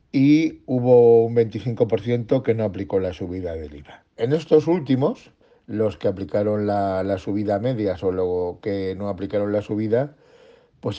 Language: Spanish